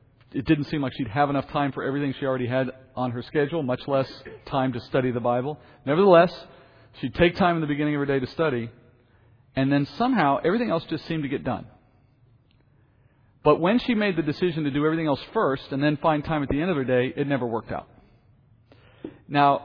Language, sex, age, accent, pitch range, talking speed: English, male, 40-59, American, 125-155 Hz, 215 wpm